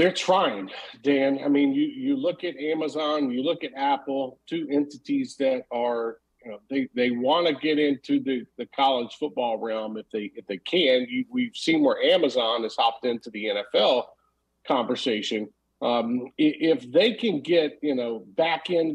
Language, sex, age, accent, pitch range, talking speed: English, male, 50-69, American, 130-165 Hz, 165 wpm